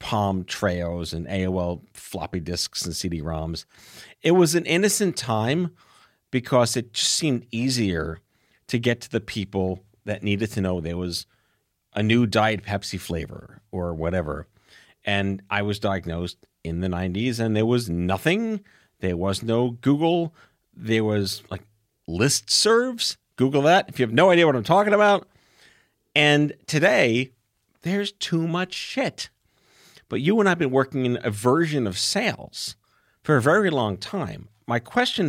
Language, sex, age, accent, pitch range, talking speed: English, male, 40-59, American, 95-140 Hz, 155 wpm